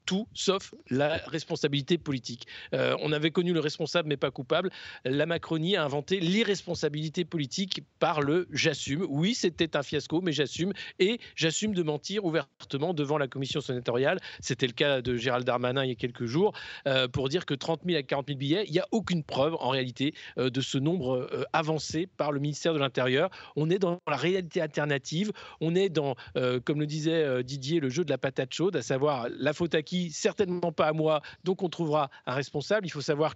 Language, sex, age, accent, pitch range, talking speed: French, male, 40-59, French, 140-180 Hz, 205 wpm